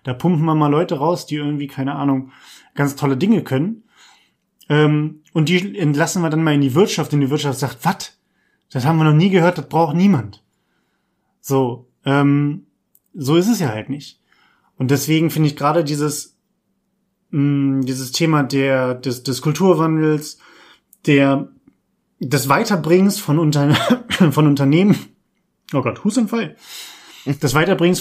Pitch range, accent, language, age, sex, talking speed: 140-175 Hz, German, German, 30-49, male, 150 wpm